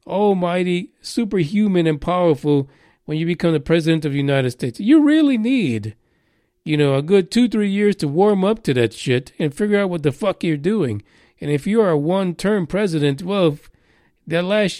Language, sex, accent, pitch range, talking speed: English, male, American, 140-200 Hz, 190 wpm